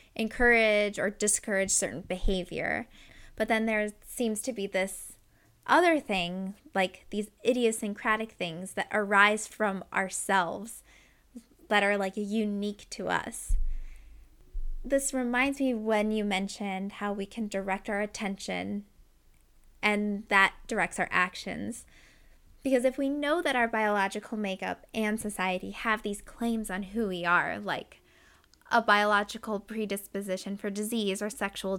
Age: 10-29